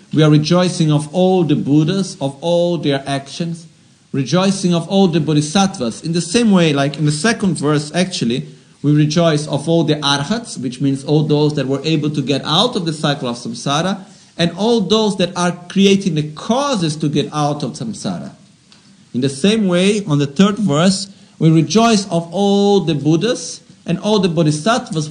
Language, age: Italian, 50-69